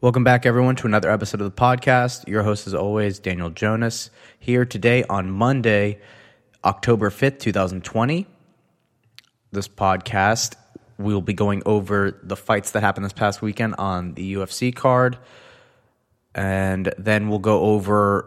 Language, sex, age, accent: English, male, 20-39, American